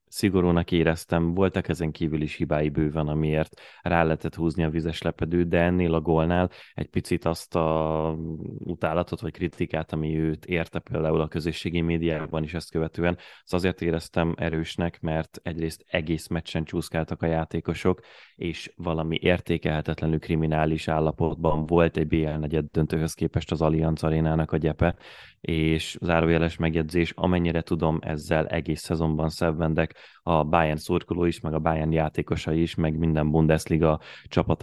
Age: 20-39